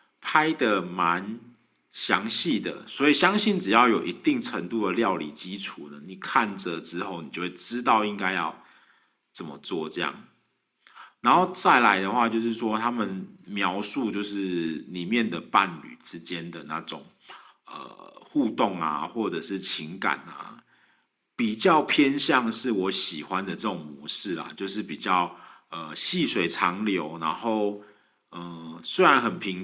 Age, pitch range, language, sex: 50-69, 90-120 Hz, Chinese, male